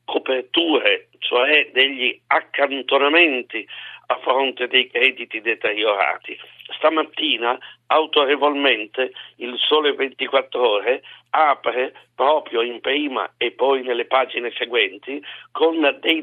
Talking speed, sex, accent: 95 wpm, male, native